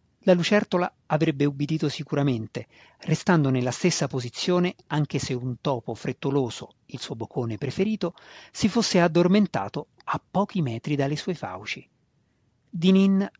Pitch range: 125-160 Hz